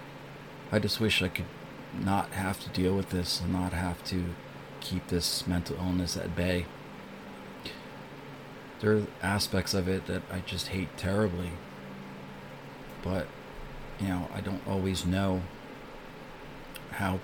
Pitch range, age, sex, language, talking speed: 90-100 Hz, 40-59, male, English, 135 wpm